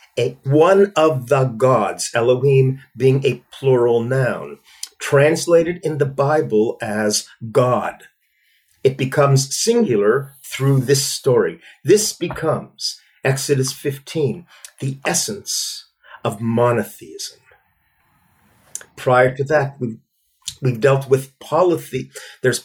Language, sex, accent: English, male, American